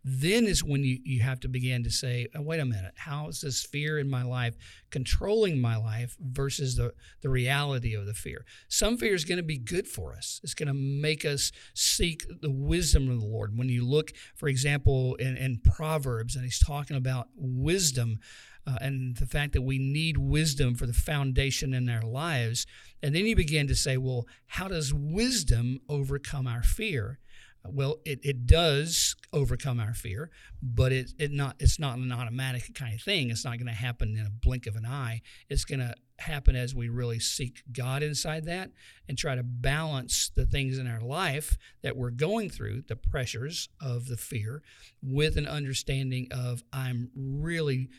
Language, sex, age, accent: English, male, 50-69, American